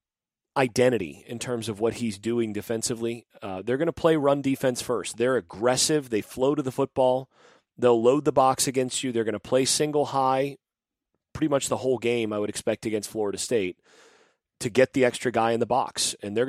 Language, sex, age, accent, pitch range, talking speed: English, male, 30-49, American, 115-135 Hz, 205 wpm